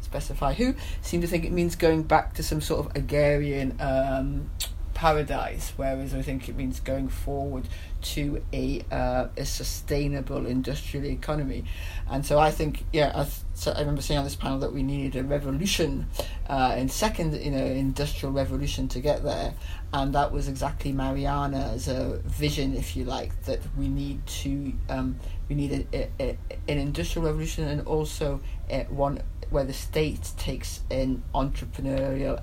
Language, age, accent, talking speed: English, 40-59, British, 170 wpm